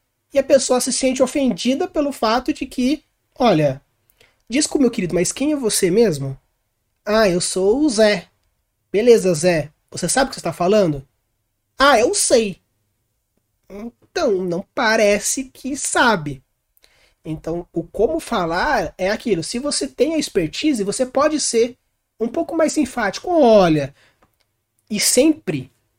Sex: male